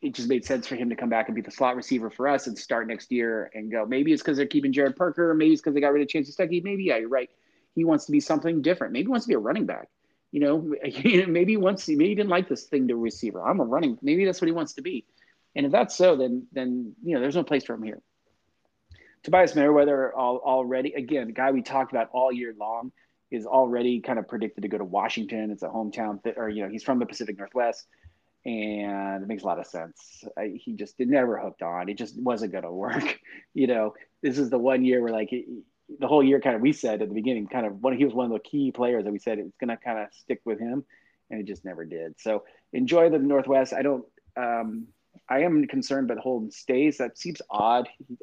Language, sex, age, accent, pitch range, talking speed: English, male, 30-49, American, 110-155 Hz, 265 wpm